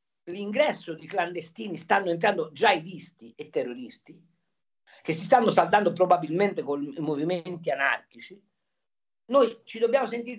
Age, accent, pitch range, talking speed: 50-69, native, 165-250 Hz, 120 wpm